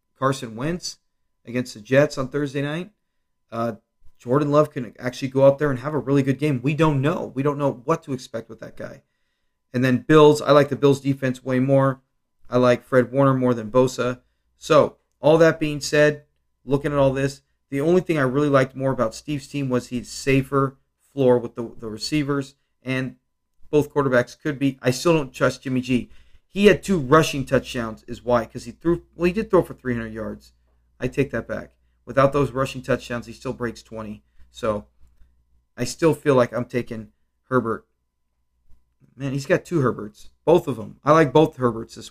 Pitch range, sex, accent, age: 115-145 Hz, male, American, 40-59